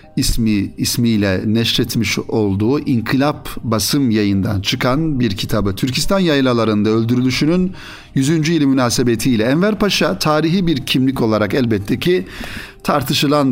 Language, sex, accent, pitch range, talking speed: Turkish, male, native, 110-150 Hz, 110 wpm